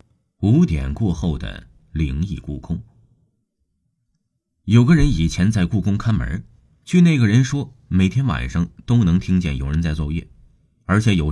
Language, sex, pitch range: Chinese, male, 80-125 Hz